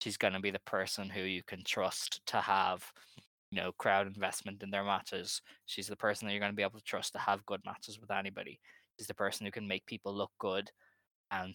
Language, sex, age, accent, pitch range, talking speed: English, male, 10-29, Irish, 100-105 Hz, 240 wpm